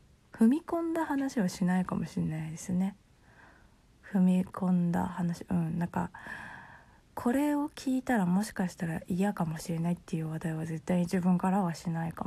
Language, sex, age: Japanese, female, 20-39